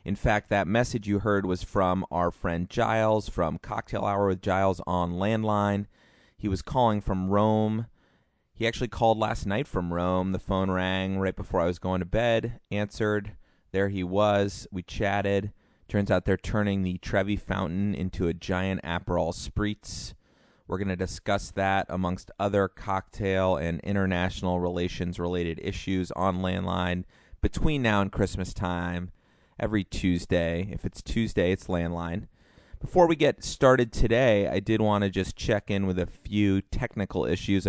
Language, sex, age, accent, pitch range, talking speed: English, male, 30-49, American, 90-105 Hz, 160 wpm